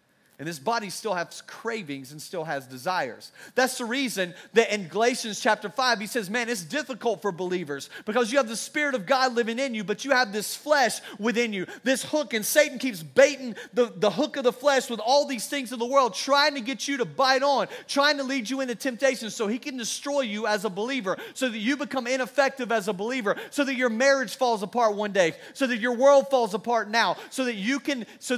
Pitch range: 195-260 Hz